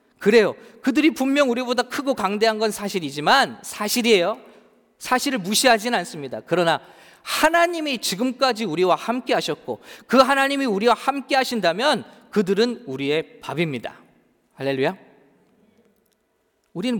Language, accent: English, Korean